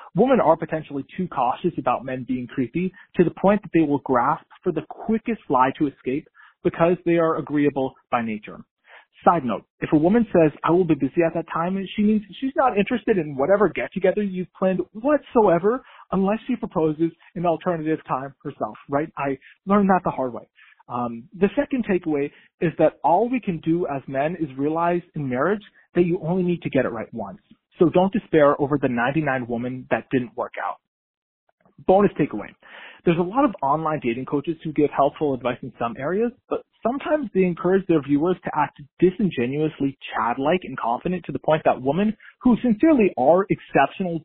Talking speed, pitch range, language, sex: 190 wpm, 140-185 Hz, English, male